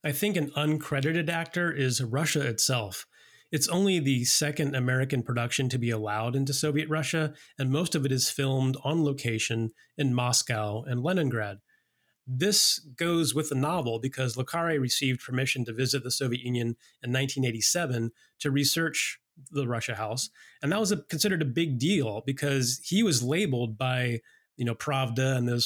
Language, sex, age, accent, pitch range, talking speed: English, male, 30-49, American, 125-150 Hz, 165 wpm